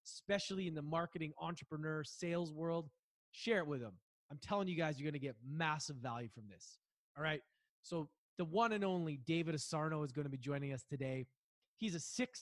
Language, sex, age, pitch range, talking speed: English, male, 20-39, 145-180 Hz, 205 wpm